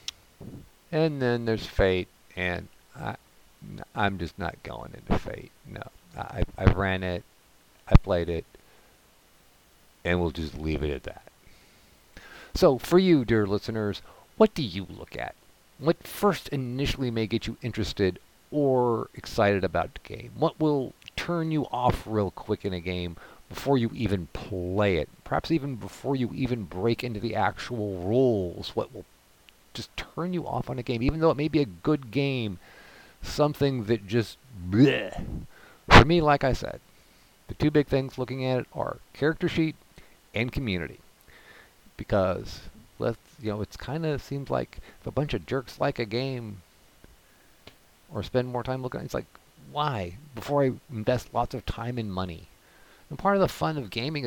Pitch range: 100-140 Hz